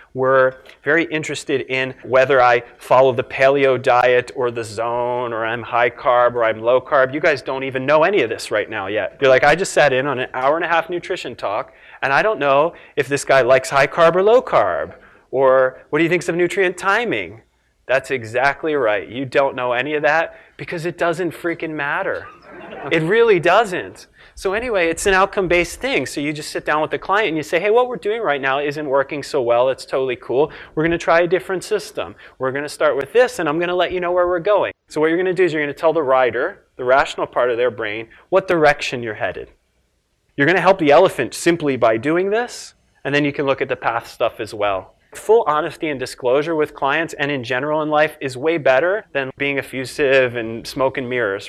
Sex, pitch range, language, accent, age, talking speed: male, 130-175 Hz, English, American, 30-49, 235 wpm